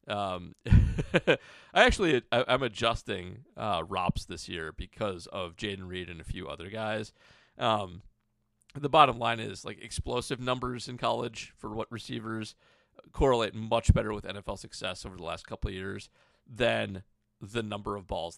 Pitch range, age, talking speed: 100-130 Hz, 30-49, 160 wpm